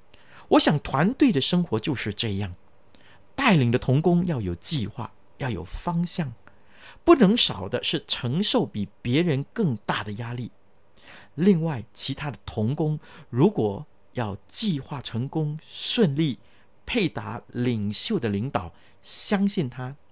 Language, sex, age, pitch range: Chinese, male, 50-69, 105-175 Hz